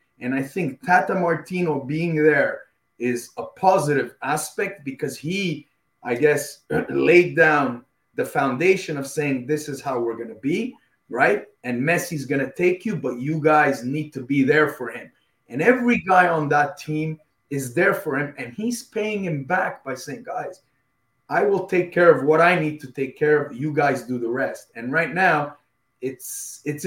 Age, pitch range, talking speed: 30-49, 140-180 Hz, 190 wpm